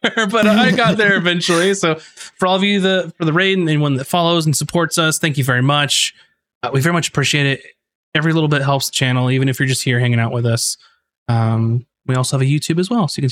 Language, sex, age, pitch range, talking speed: English, male, 20-39, 125-170 Hz, 255 wpm